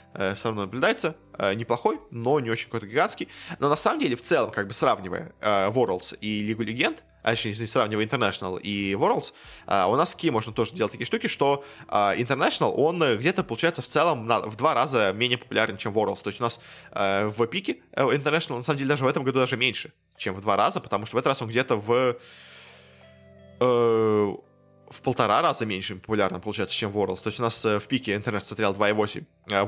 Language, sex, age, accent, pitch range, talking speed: Russian, male, 20-39, native, 100-125 Hz, 195 wpm